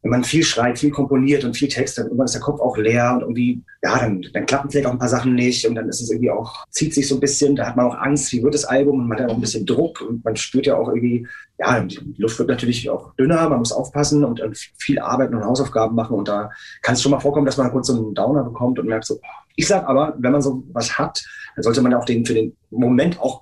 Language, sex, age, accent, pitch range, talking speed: German, male, 30-49, German, 120-140 Hz, 280 wpm